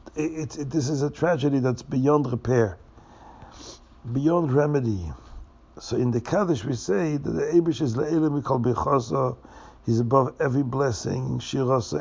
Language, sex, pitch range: English, male, 115-150 Hz